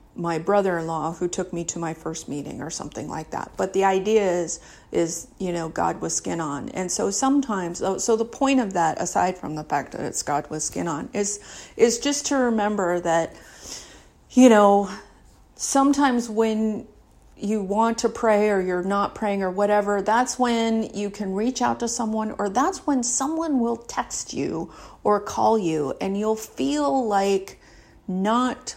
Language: English